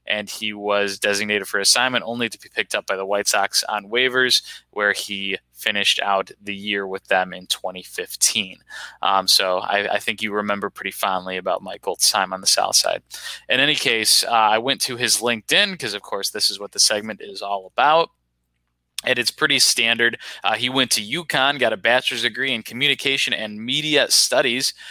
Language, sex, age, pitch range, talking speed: English, male, 20-39, 100-120 Hz, 195 wpm